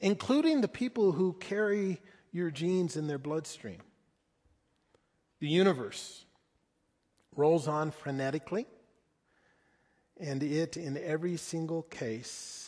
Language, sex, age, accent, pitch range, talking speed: English, male, 40-59, American, 165-205 Hz, 100 wpm